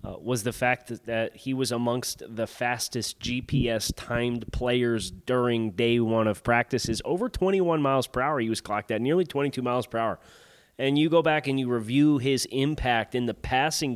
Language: English